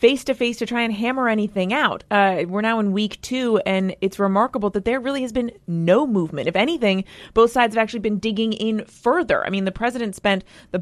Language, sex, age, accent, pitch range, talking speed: English, female, 30-49, American, 180-230 Hz, 220 wpm